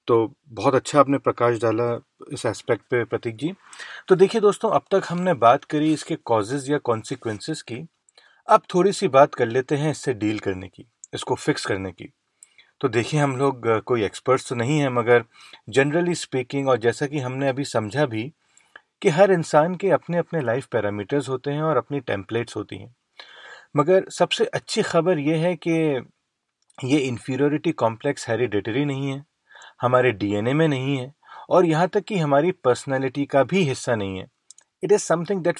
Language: Hindi